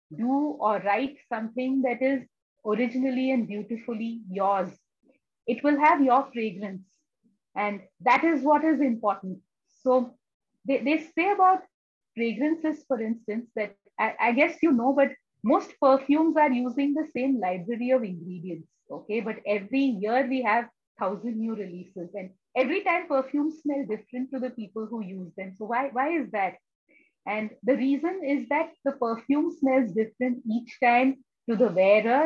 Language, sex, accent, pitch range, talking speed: English, female, Indian, 210-275 Hz, 160 wpm